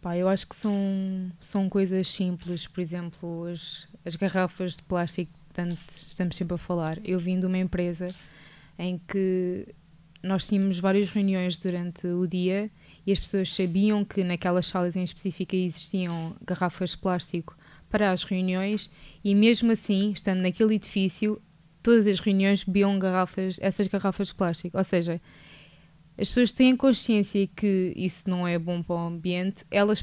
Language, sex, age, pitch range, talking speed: Portuguese, female, 20-39, 175-205 Hz, 160 wpm